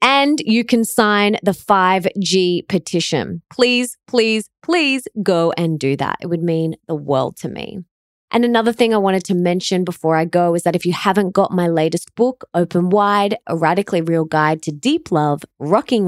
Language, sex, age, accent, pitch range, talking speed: English, female, 20-39, Australian, 175-240 Hz, 185 wpm